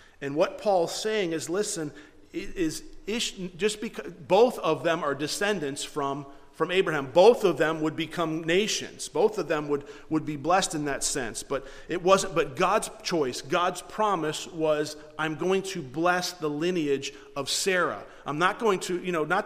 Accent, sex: American, male